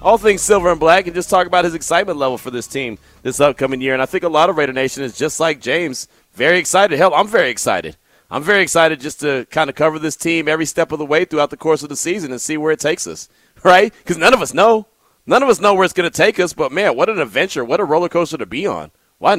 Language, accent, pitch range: English, American, 145-200 Hz